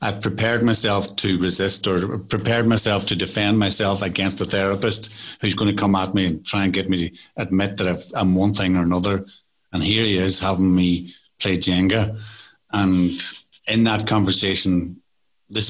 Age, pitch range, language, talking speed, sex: 60-79, 95-105 Hz, English, 175 wpm, male